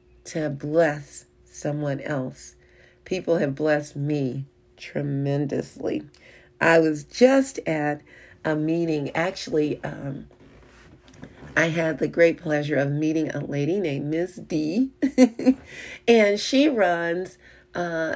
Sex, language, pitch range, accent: female, English, 150-185 Hz, American